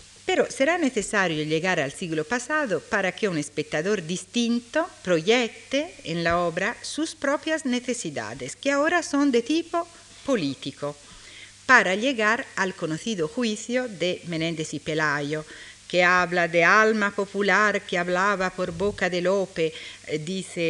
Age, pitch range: 50-69, 160-240 Hz